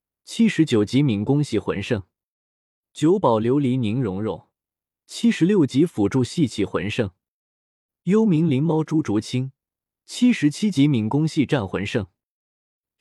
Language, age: Chinese, 20-39